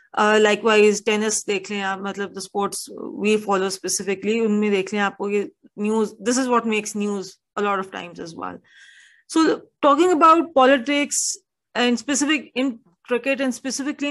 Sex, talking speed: female, 160 wpm